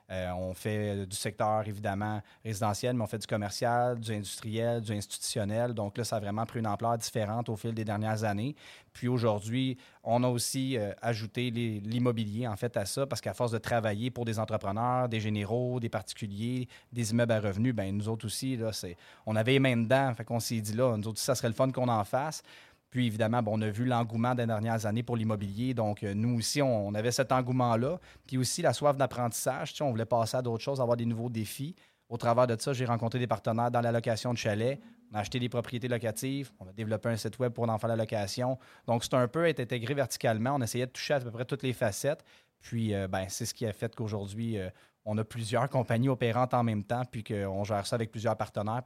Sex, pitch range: male, 110-125 Hz